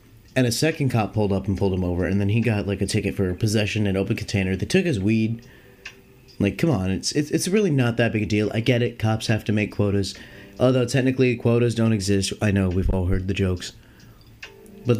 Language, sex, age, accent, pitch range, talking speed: English, male, 30-49, American, 100-120 Hz, 235 wpm